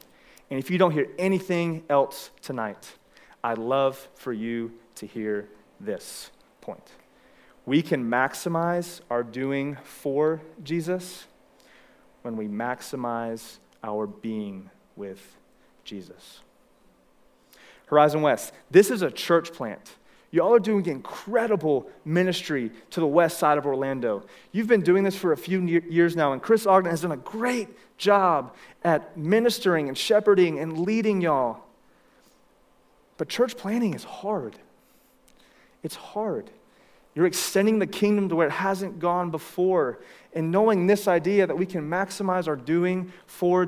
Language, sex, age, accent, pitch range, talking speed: English, male, 30-49, American, 140-190 Hz, 135 wpm